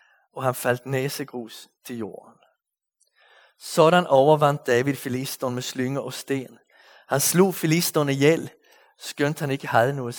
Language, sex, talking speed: Danish, male, 135 wpm